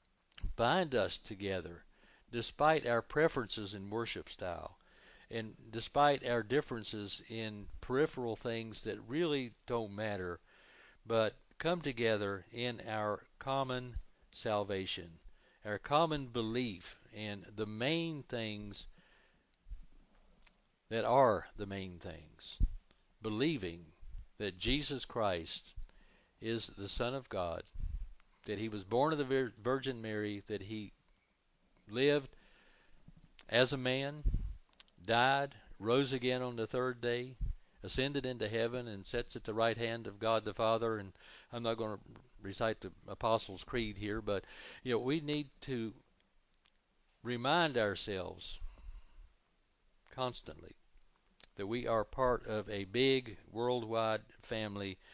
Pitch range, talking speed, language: 105-125 Hz, 120 wpm, English